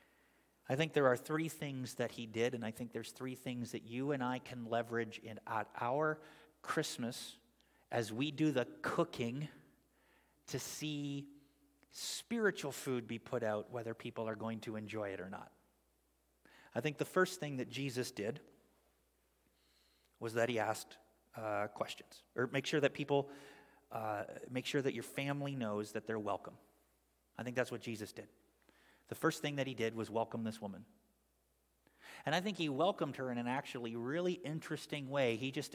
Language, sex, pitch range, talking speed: English, male, 115-145 Hz, 175 wpm